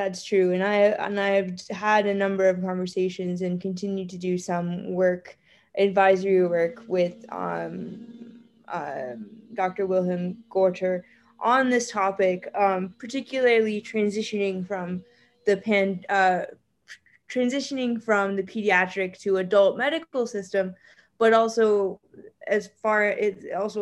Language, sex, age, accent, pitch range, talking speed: English, female, 20-39, American, 190-230 Hz, 125 wpm